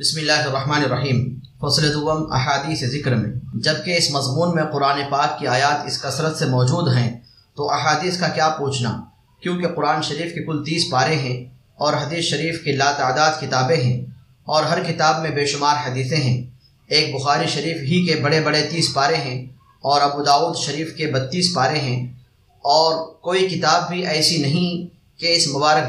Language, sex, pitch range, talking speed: Arabic, male, 135-160 Hz, 180 wpm